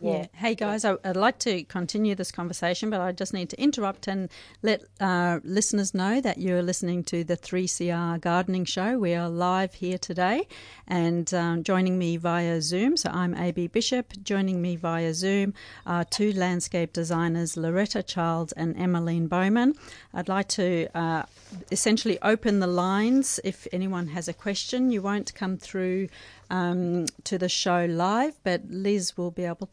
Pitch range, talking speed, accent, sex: 175-205 Hz, 170 wpm, Australian, female